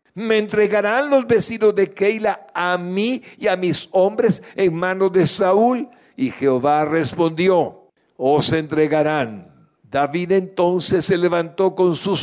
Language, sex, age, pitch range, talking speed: Spanish, male, 60-79, 145-200 Hz, 130 wpm